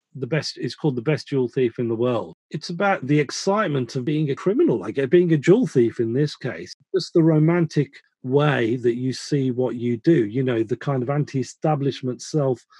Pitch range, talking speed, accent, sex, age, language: 130-170 Hz, 210 wpm, British, male, 40-59, English